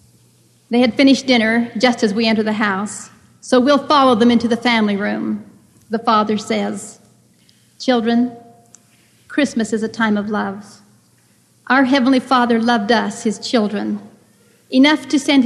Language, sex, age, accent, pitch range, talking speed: English, female, 50-69, American, 215-245 Hz, 150 wpm